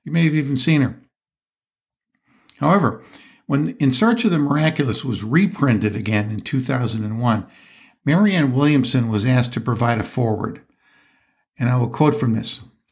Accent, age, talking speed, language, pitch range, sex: American, 60-79, 150 wpm, English, 115-145 Hz, male